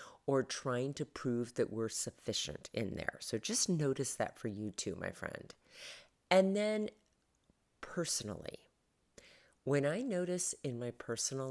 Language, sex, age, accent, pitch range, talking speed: English, female, 40-59, American, 115-150 Hz, 140 wpm